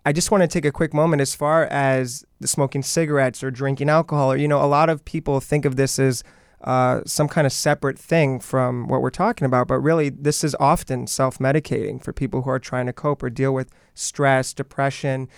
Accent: American